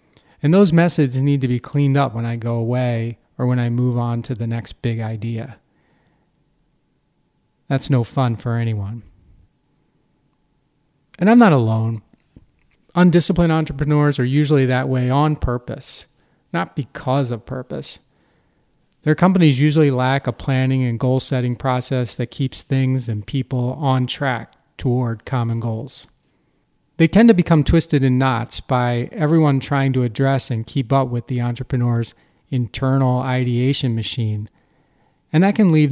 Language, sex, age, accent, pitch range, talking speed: English, male, 40-59, American, 120-145 Hz, 145 wpm